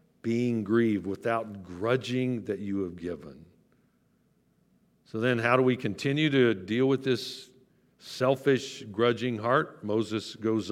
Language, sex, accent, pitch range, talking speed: English, male, American, 110-135 Hz, 130 wpm